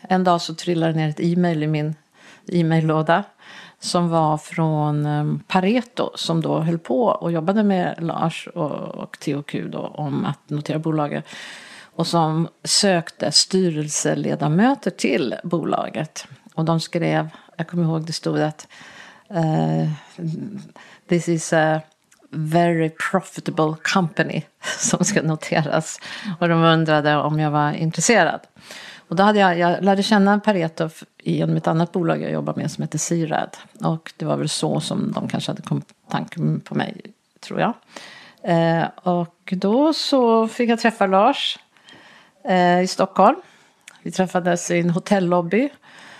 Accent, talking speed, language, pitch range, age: native, 140 wpm, Swedish, 160-195 Hz, 40-59